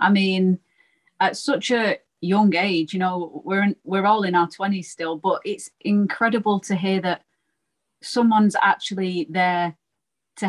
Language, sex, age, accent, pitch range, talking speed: English, female, 30-49, British, 175-205 Hz, 155 wpm